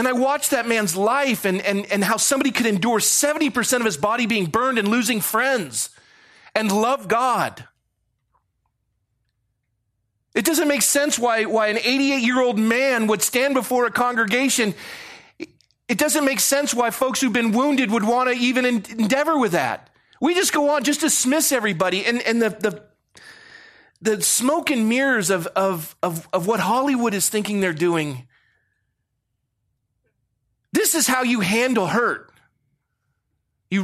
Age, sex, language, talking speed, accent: 40-59, male, English, 155 wpm, American